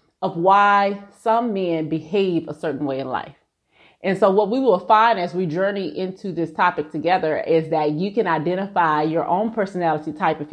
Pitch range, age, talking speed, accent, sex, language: 170-220 Hz, 30-49, 190 wpm, American, female, English